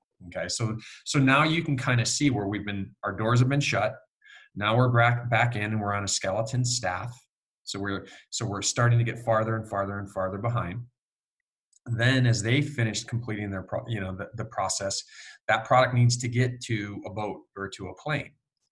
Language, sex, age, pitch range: English, male, 20-39, 100-120 Hz